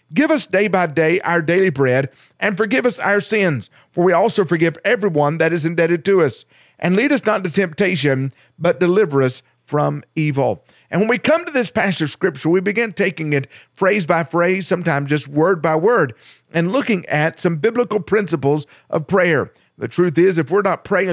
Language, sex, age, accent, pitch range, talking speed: English, male, 50-69, American, 160-210 Hz, 200 wpm